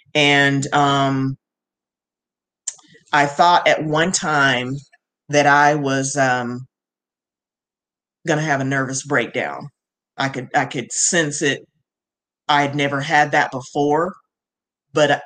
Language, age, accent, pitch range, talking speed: English, 40-59, American, 130-145 Hz, 115 wpm